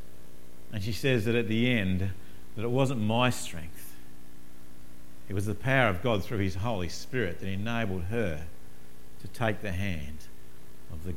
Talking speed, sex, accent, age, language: 165 wpm, male, Australian, 50-69, English